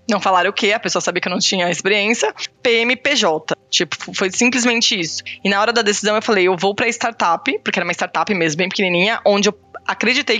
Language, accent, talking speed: Portuguese, Brazilian, 220 wpm